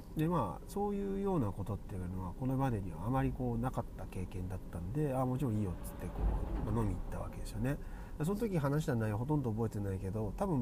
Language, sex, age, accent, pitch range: Japanese, male, 30-49, native, 95-135 Hz